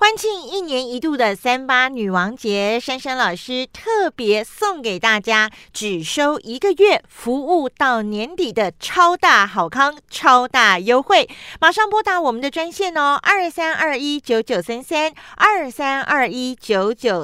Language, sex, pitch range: Chinese, female, 230-345 Hz